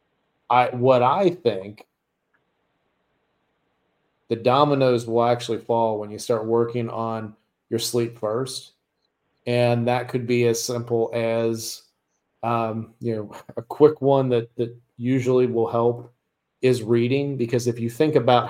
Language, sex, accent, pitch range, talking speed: English, male, American, 115-130 Hz, 135 wpm